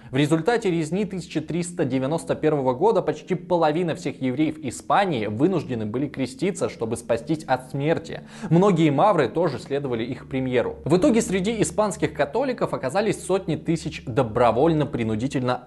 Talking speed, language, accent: 125 wpm, Russian, native